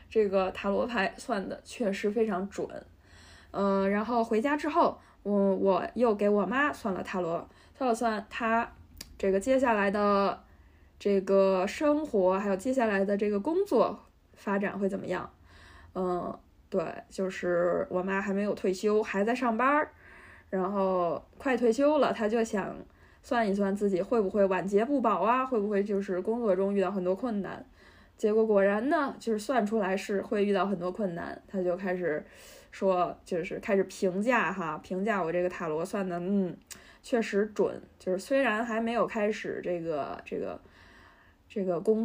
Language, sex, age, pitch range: Chinese, female, 20-39, 185-225 Hz